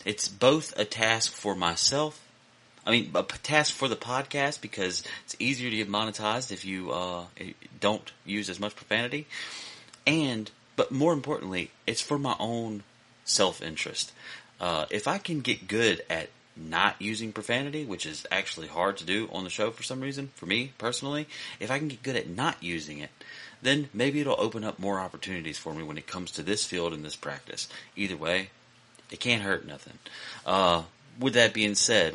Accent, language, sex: American, English, male